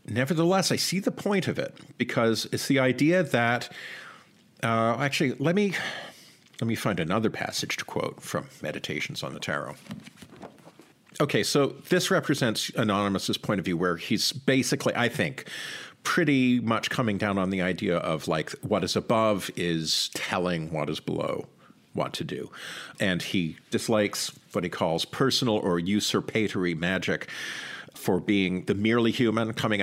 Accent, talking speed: American, 155 wpm